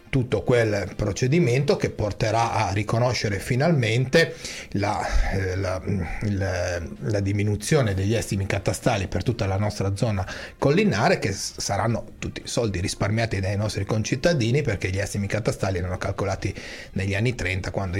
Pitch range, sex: 95-115 Hz, male